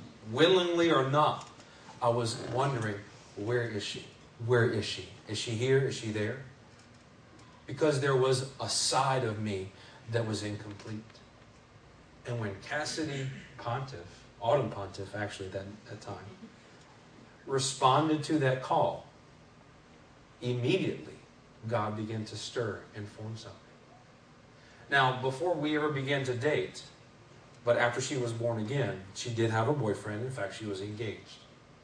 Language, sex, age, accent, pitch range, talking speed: English, male, 40-59, American, 110-135 Hz, 140 wpm